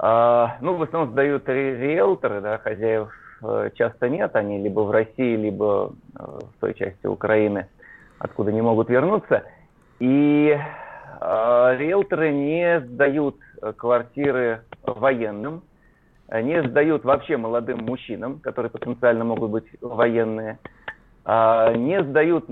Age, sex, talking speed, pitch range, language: 30-49, male, 115 wpm, 110-150 Hz, Russian